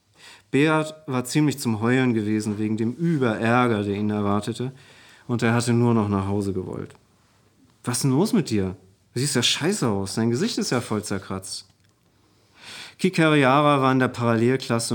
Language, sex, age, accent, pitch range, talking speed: German, male, 40-59, German, 110-150 Hz, 165 wpm